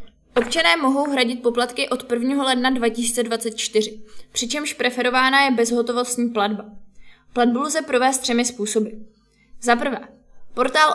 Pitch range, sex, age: 225-260 Hz, female, 20-39